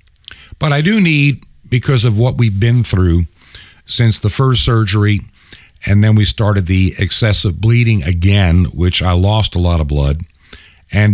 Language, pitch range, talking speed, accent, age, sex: English, 85-120 Hz, 160 wpm, American, 50-69, male